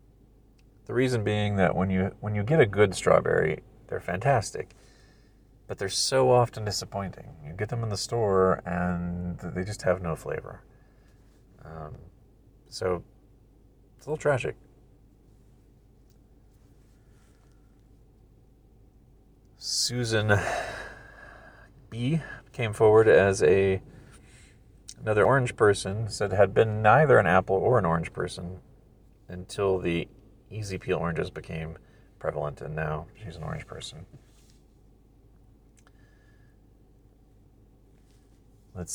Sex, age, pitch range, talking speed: male, 40-59, 95-125 Hz, 110 wpm